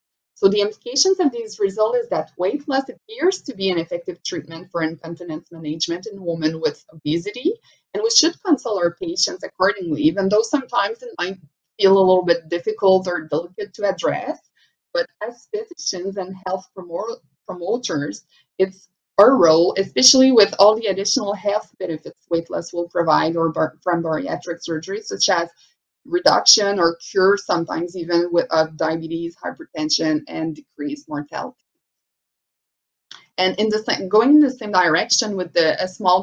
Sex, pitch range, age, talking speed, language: female, 170-240 Hz, 20-39, 155 wpm, English